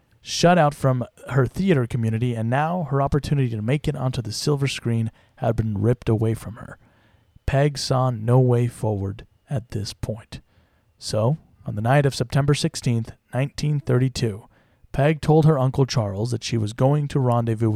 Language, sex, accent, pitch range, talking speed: English, male, American, 115-140 Hz, 170 wpm